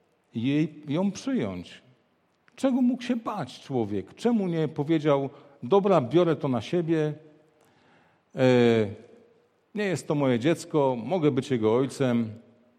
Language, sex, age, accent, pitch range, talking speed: Polish, male, 50-69, native, 145-215 Hz, 115 wpm